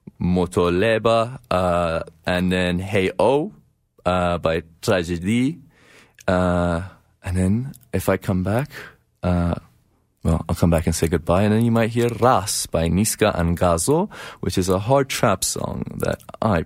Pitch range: 85-105 Hz